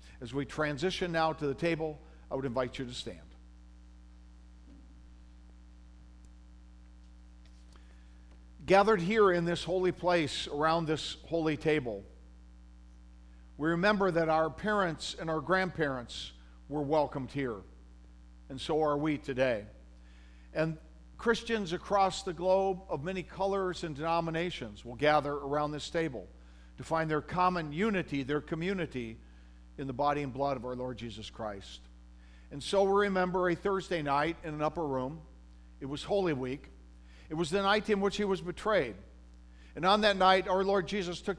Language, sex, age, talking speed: English, male, 50-69, 150 wpm